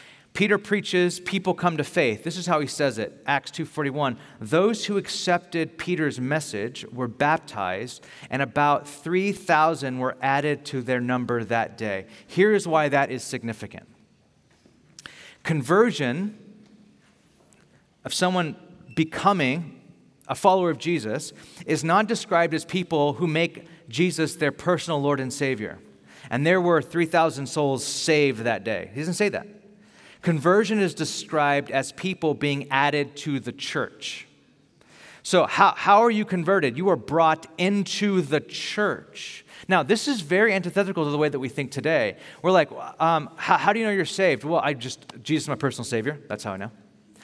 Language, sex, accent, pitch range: English, male, American, 140-180 Hz